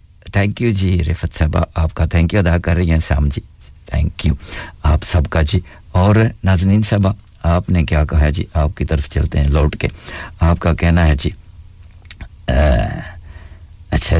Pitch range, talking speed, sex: 80-95 Hz, 165 wpm, male